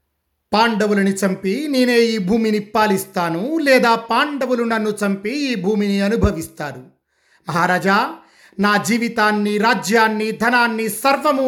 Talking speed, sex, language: 100 wpm, male, Telugu